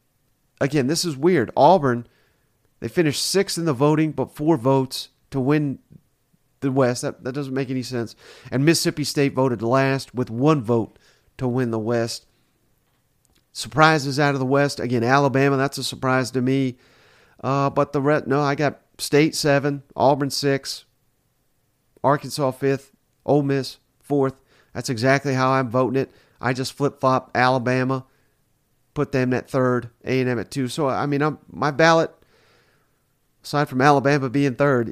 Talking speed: 160 wpm